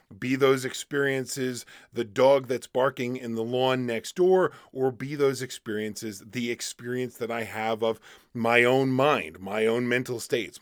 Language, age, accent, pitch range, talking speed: English, 40-59, American, 110-150 Hz, 165 wpm